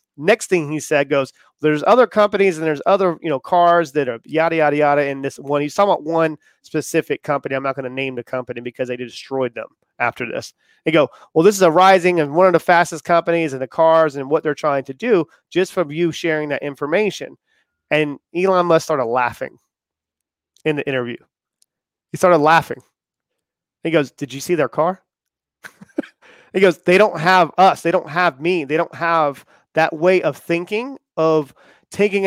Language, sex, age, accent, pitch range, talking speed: English, male, 30-49, American, 150-185 Hz, 195 wpm